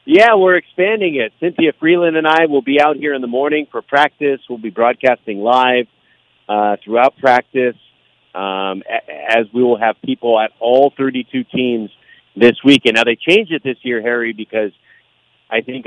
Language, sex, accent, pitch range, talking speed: English, male, American, 110-130 Hz, 175 wpm